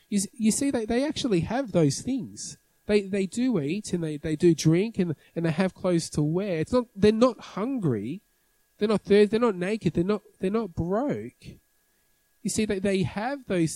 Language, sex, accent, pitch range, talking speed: English, male, Australian, 155-205 Hz, 195 wpm